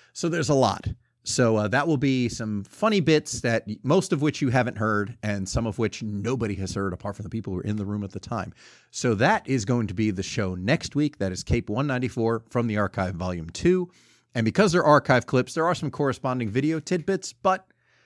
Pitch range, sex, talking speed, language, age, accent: 105-135 Hz, male, 230 wpm, English, 40-59, American